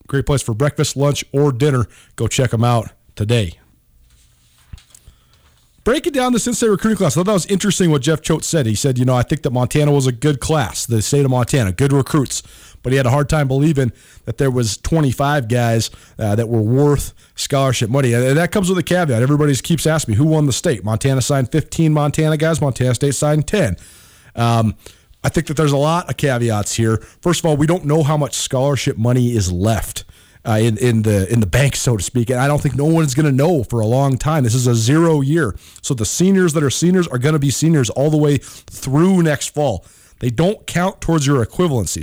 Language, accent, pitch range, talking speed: English, American, 115-155 Hz, 225 wpm